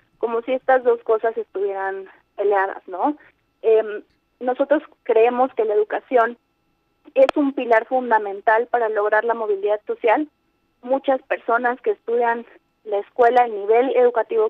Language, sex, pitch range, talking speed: Spanish, female, 210-265 Hz, 135 wpm